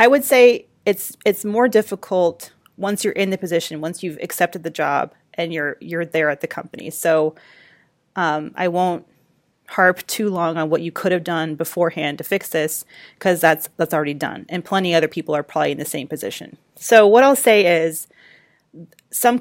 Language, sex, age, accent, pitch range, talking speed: English, female, 30-49, American, 165-200 Hz, 195 wpm